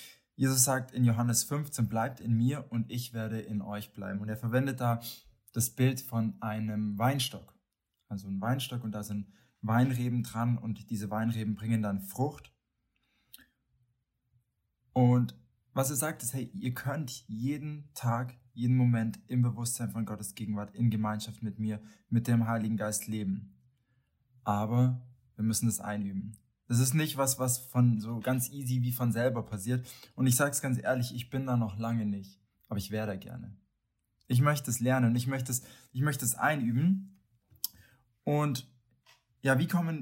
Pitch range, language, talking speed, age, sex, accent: 110-125 Hz, German, 170 wpm, 20-39, male, German